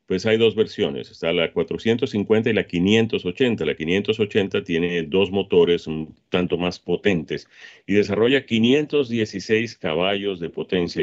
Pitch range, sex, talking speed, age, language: 90-120 Hz, male, 135 wpm, 40-59, Spanish